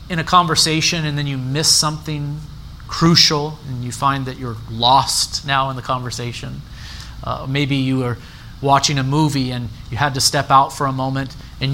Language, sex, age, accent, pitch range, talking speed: English, male, 30-49, American, 130-175 Hz, 185 wpm